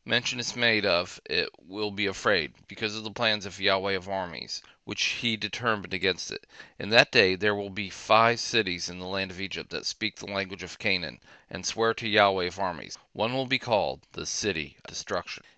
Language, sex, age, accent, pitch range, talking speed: English, male, 40-59, American, 95-115 Hz, 210 wpm